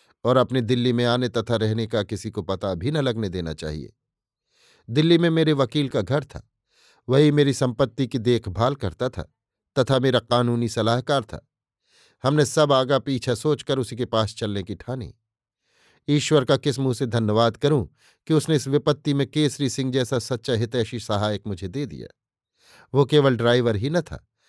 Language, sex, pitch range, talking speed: Hindi, male, 115-140 Hz, 180 wpm